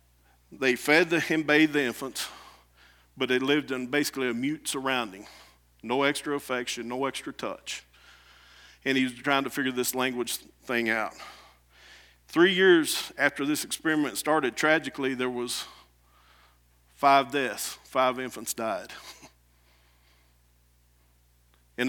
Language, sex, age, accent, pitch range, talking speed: English, male, 50-69, American, 120-150 Hz, 125 wpm